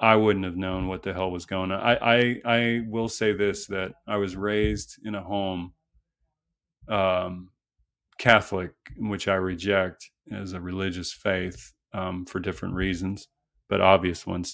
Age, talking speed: 30-49, 160 wpm